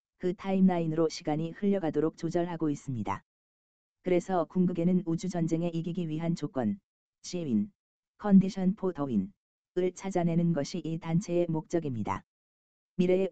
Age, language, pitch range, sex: 20-39, Korean, 160-185 Hz, female